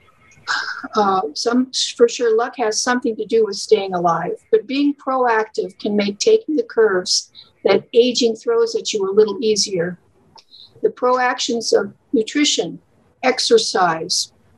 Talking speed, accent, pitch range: 135 wpm, American, 215-275 Hz